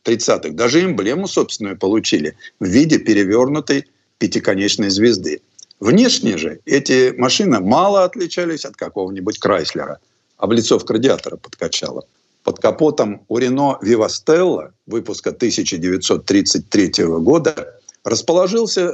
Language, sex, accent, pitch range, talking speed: Russian, male, native, 120-185 Hz, 95 wpm